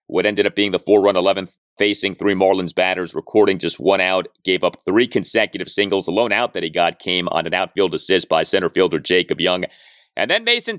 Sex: male